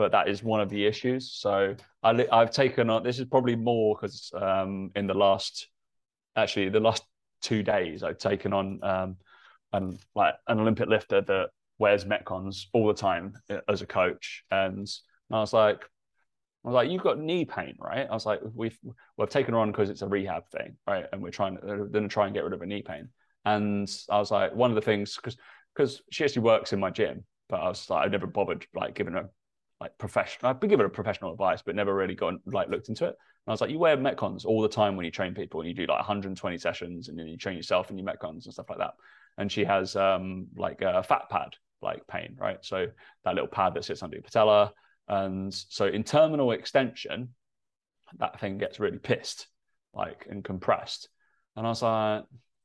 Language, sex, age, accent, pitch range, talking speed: English, male, 20-39, British, 100-120 Hz, 220 wpm